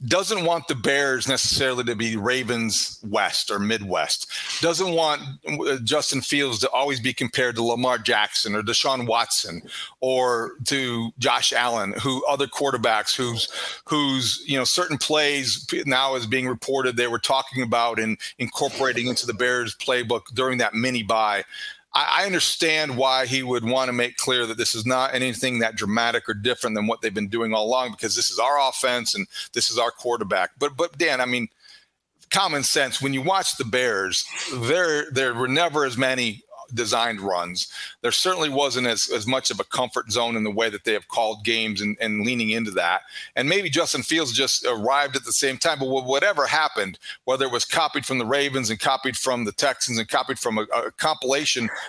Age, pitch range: 40-59, 120-145 Hz